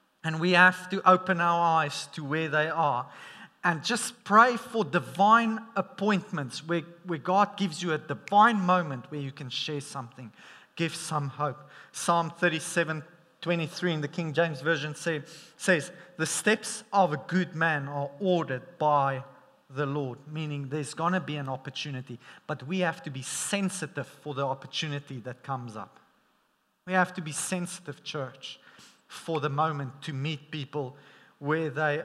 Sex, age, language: male, 30-49, English